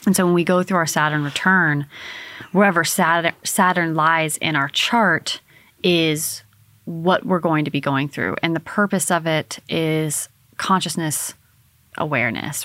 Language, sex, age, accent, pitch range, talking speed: English, female, 30-49, American, 145-175 Hz, 145 wpm